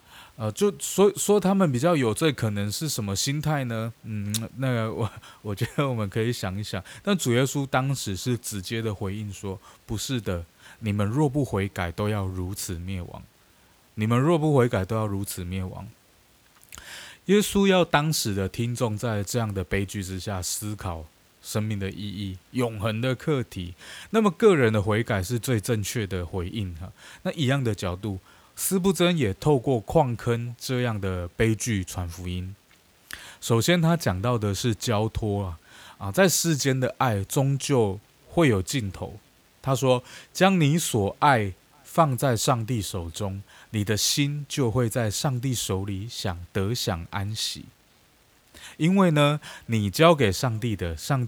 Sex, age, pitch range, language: male, 20-39, 100-135 Hz, Chinese